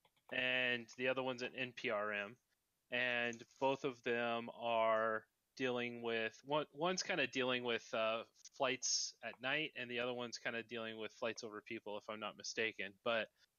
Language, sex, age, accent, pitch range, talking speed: English, male, 20-39, American, 115-130 Hz, 170 wpm